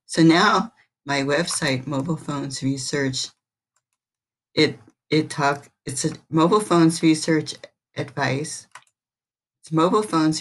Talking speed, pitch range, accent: 110 wpm, 135-160 Hz, American